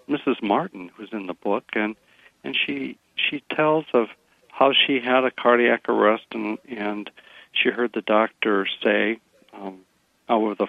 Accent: American